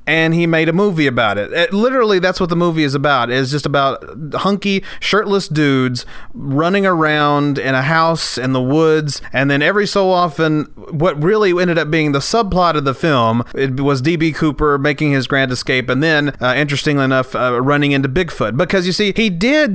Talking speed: 200 wpm